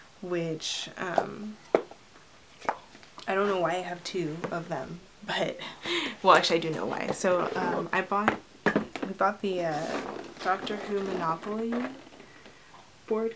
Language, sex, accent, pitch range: English, female, American, 175-230 Hz